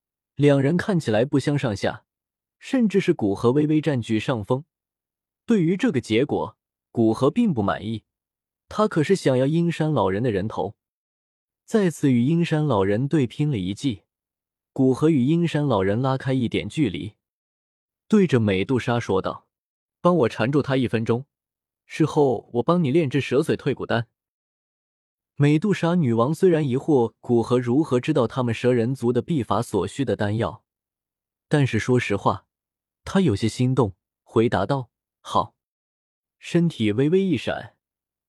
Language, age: Chinese, 20-39